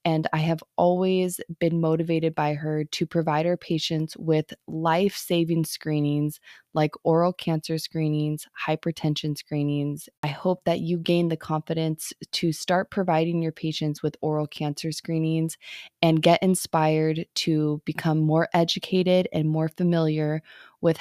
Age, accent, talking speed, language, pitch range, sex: 20-39, American, 135 wpm, English, 160-190 Hz, female